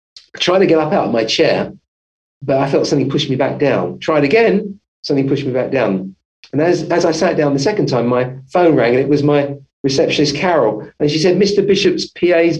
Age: 40-59